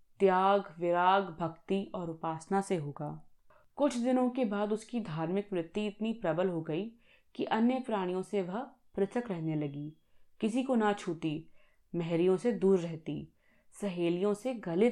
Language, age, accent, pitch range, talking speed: Hindi, 20-39, native, 170-215 Hz, 150 wpm